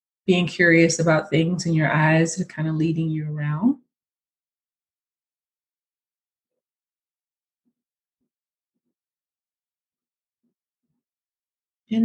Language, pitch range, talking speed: English, 155-195 Hz, 70 wpm